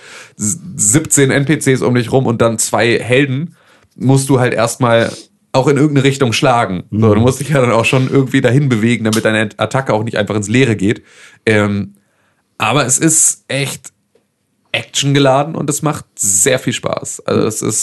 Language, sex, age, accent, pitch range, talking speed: German, male, 30-49, German, 110-135 Hz, 180 wpm